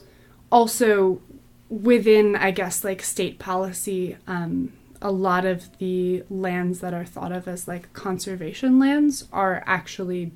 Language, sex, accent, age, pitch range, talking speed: English, female, American, 20-39, 170-195 Hz, 135 wpm